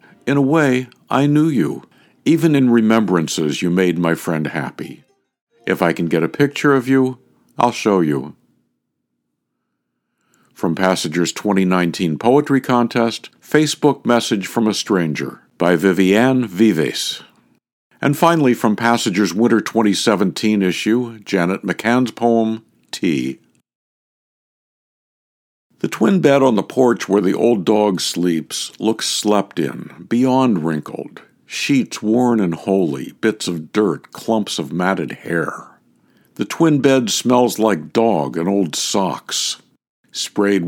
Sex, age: male, 60-79